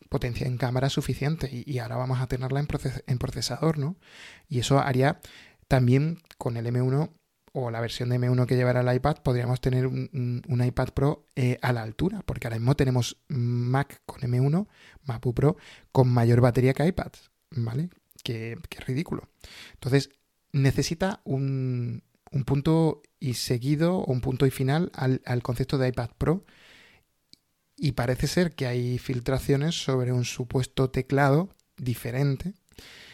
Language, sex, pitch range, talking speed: English, male, 125-145 Hz, 160 wpm